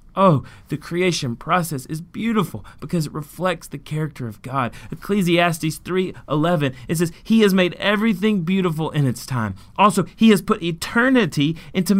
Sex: male